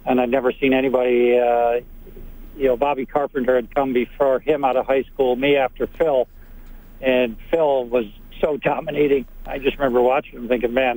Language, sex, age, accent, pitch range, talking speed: English, male, 60-79, American, 125-140 Hz, 185 wpm